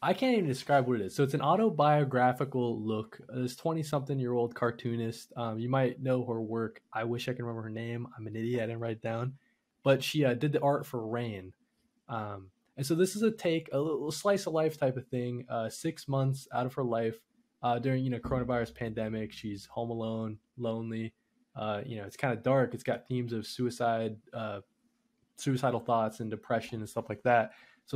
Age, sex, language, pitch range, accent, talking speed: 20-39, male, English, 115-145 Hz, American, 220 wpm